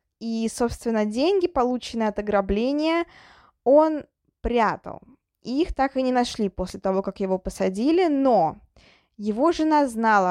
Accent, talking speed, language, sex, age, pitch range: native, 130 wpm, Russian, female, 20-39, 200-280 Hz